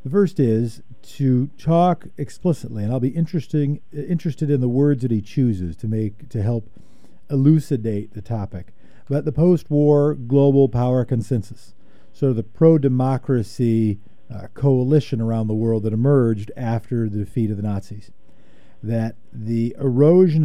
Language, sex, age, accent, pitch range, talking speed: English, male, 50-69, American, 115-145 Hz, 145 wpm